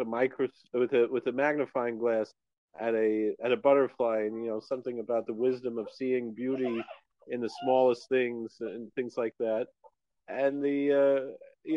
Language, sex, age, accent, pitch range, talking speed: English, male, 40-59, American, 120-150 Hz, 175 wpm